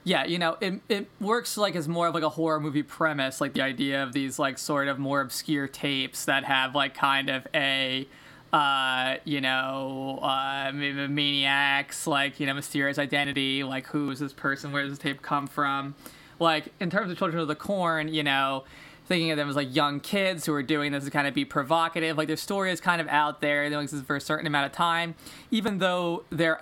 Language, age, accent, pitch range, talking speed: English, 20-39, American, 140-160 Hz, 220 wpm